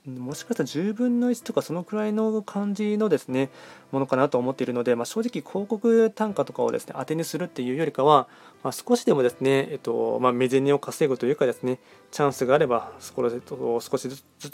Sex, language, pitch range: male, Japanese, 125-195 Hz